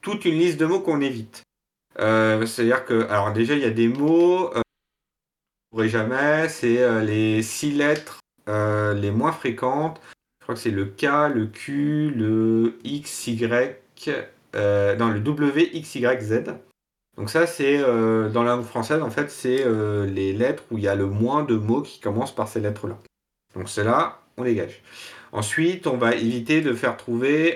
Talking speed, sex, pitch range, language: 185 wpm, male, 110-145 Hz, French